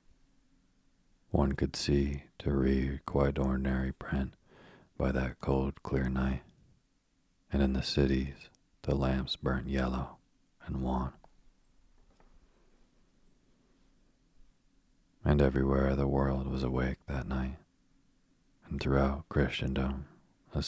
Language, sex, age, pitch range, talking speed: English, male, 40-59, 65-70 Hz, 100 wpm